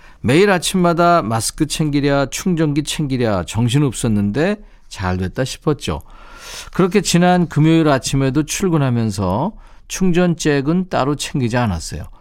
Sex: male